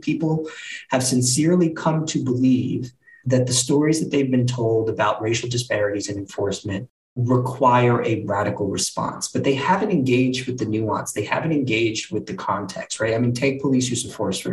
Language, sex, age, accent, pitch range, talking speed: English, male, 20-39, American, 130-170 Hz, 180 wpm